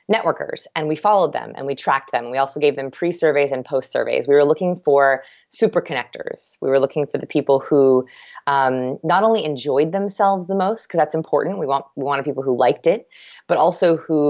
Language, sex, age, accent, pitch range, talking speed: English, female, 20-39, American, 135-170 Hz, 210 wpm